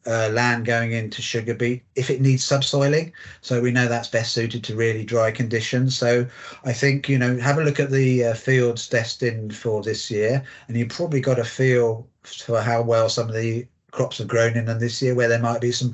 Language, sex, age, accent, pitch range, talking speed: English, male, 40-59, British, 115-130 Hz, 225 wpm